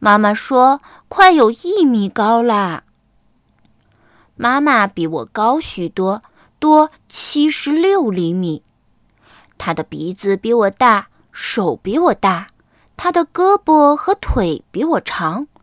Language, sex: Chinese, female